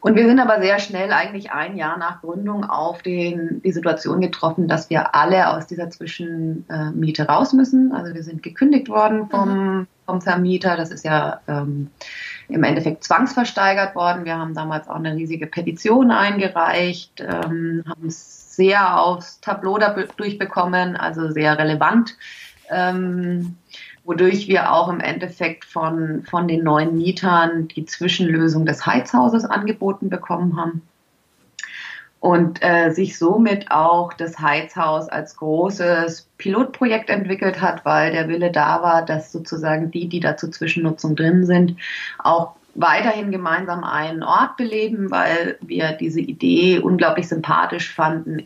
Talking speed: 140 wpm